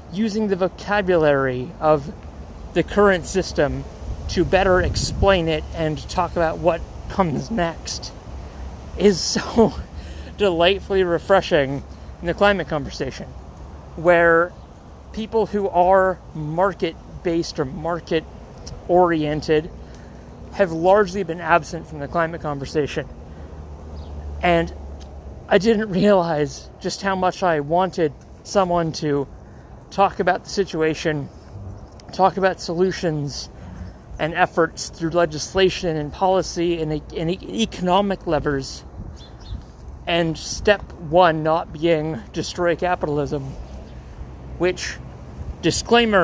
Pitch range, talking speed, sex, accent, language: 135-180 Hz, 100 wpm, male, American, English